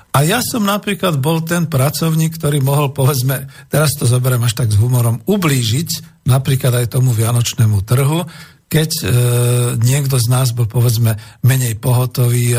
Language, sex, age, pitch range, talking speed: Slovak, male, 50-69, 110-140 Hz, 155 wpm